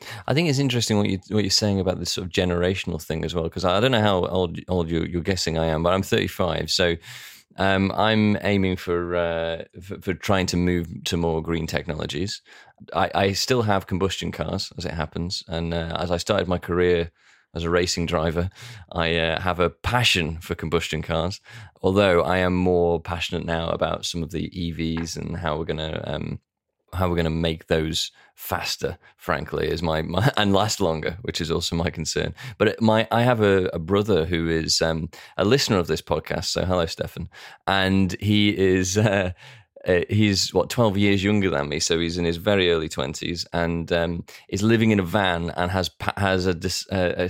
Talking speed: 205 wpm